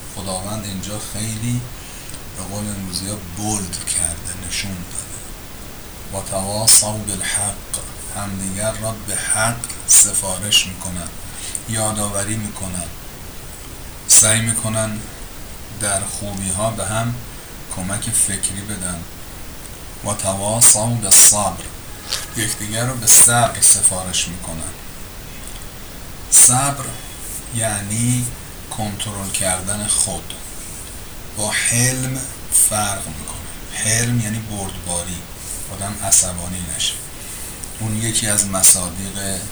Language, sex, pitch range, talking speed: Persian, male, 90-110 Hz, 90 wpm